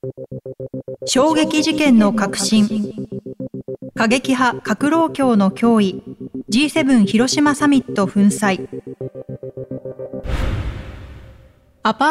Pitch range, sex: 200-265 Hz, female